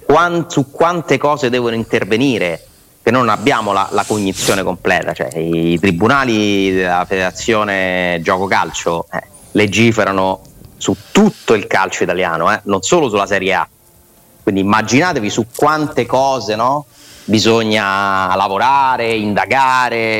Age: 30-49